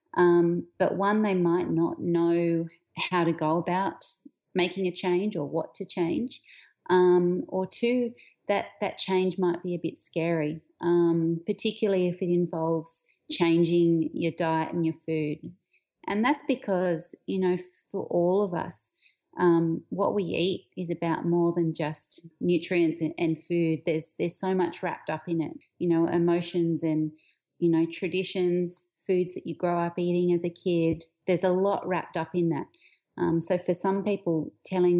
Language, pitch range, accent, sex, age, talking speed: English, 165-185 Hz, Australian, female, 30-49, 170 wpm